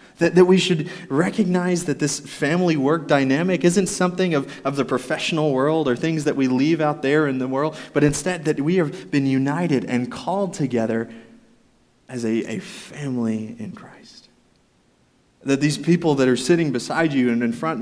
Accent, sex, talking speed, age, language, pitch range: American, male, 180 wpm, 20-39, English, 120-160 Hz